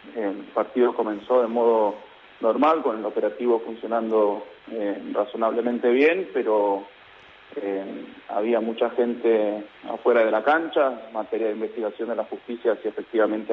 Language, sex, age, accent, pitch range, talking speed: Spanish, male, 30-49, Argentinian, 105-120 Hz, 135 wpm